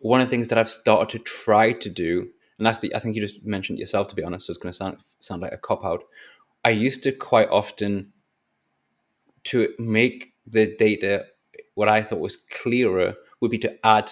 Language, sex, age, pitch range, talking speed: English, male, 20-39, 100-120 Hz, 215 wpm